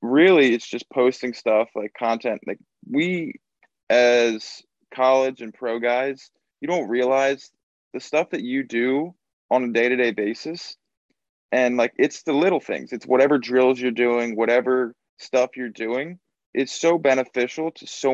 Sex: male